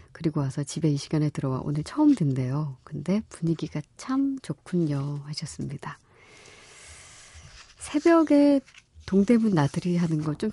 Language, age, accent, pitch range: Korean, 40-59, native, 140-180 Hz